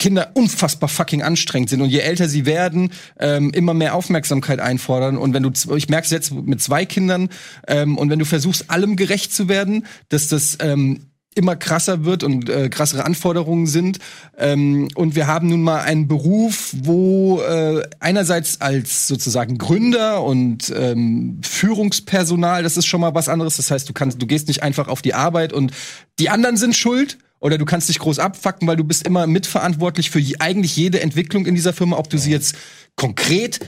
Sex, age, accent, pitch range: male, 30-49, German, 145-185 Hz